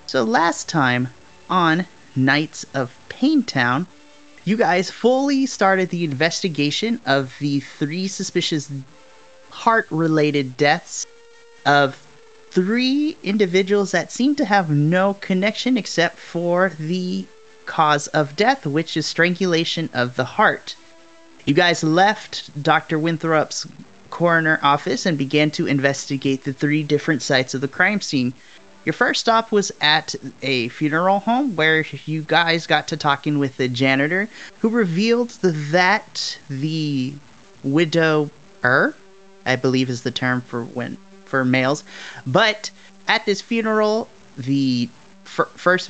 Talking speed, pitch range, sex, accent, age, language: 130 wpm, 140-195 Hz, male, American, 30-49, English